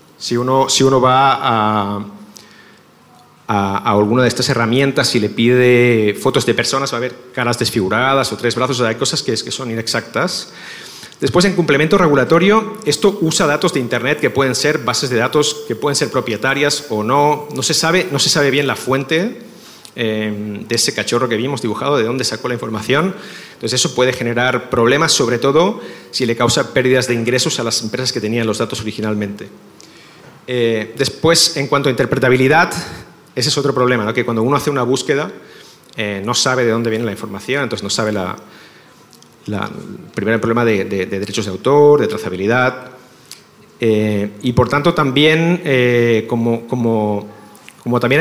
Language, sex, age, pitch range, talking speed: English, male, 40-59, 115-140 Hz, 185 wpm